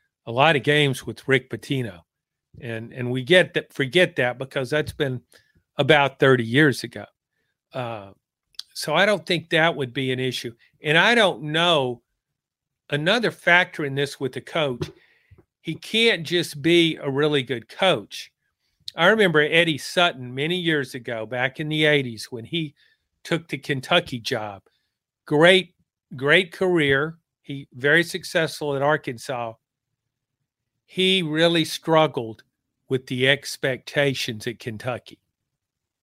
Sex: male